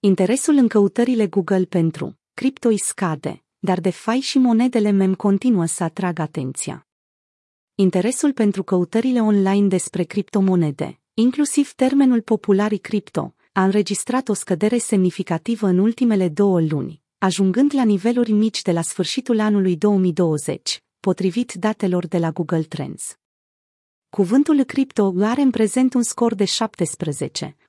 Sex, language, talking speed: female, Romanian, 130 wpm